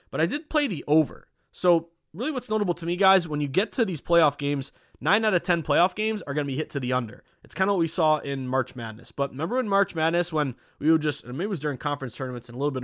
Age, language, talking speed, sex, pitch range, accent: 20-39, English, 290 wpm, male, 135-185 Hz, American